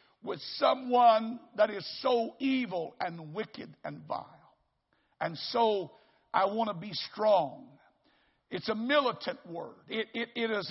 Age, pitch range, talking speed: 60-79, 225-280 Hz, 140 wpm